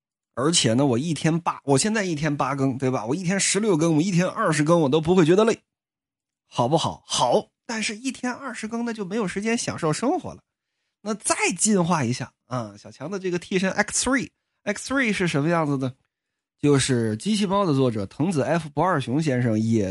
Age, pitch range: 20-39, 125-205 Hz